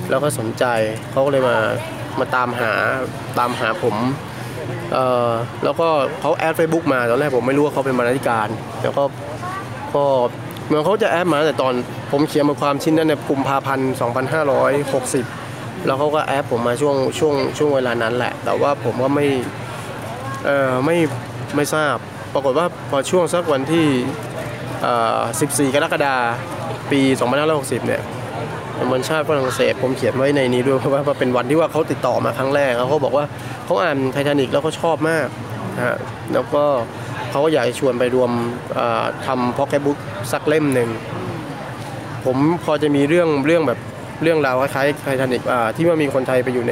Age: 20-39